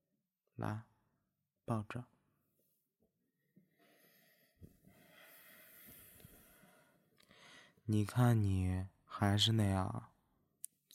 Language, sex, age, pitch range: Chinese, male, 20-39, 105-140 Hz